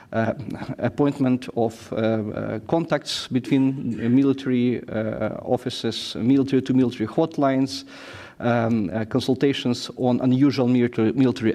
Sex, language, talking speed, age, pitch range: male, English, 100 wpm, 40-59, 115-135 Hz